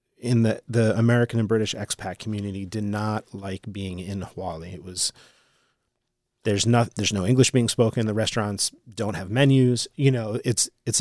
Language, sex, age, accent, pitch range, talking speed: English, male, 30-49, American, 105-125 Hz, 175 wpm